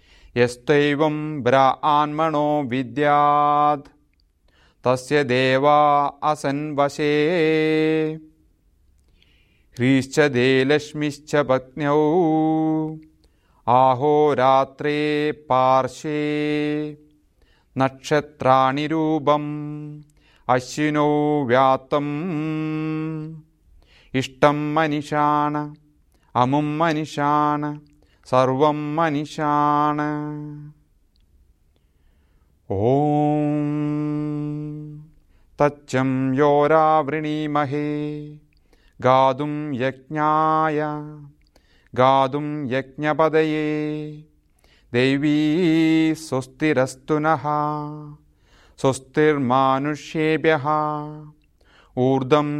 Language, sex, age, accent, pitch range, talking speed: German, male, 30-49, Indian, 130-150 Hz, 40 wpm